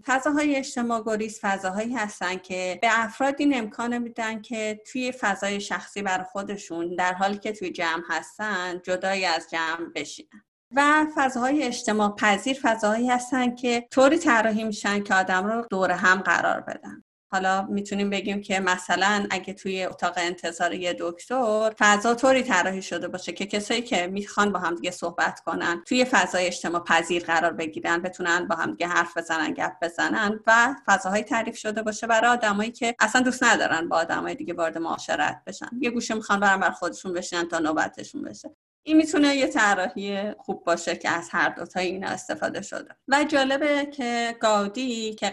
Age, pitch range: 30-49, 180-235 Hz